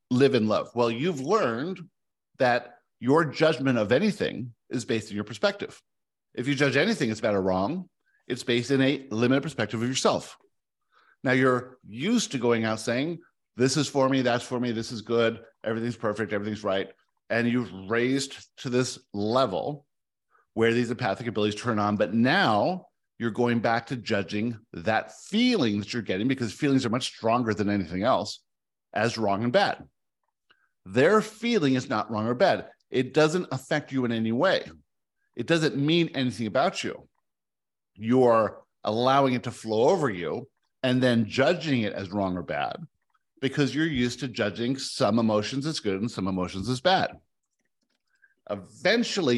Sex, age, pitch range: male, 50-69, 115-140 Hz